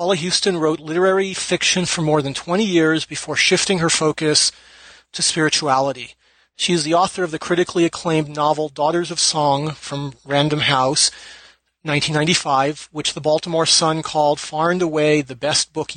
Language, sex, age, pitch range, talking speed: English, male, 40-59, 145-165 Hz, 160 wpm